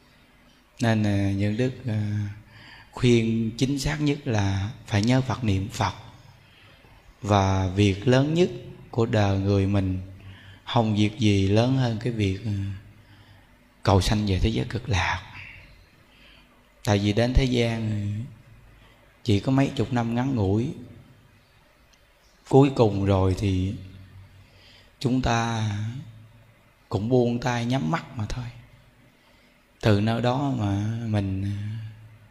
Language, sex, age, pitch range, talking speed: Vietnamese, male, 20-39, 105-125 Hz, 120 wpm